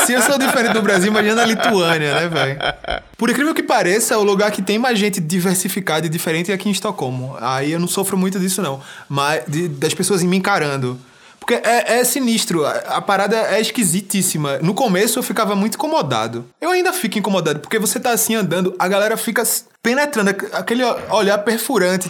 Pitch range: 155-215 Hz